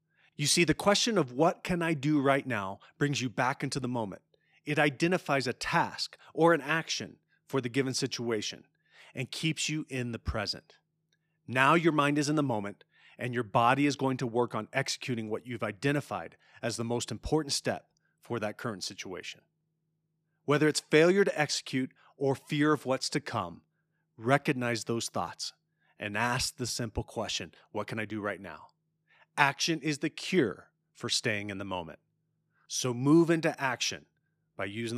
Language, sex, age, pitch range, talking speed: English, male, 30-49, 110-155 Hz, 175 wpm